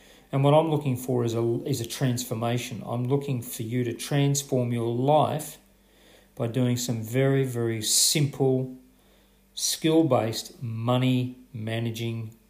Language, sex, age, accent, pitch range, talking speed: English, male, 40-59, Australian, 120-145 Hz, 125 wpm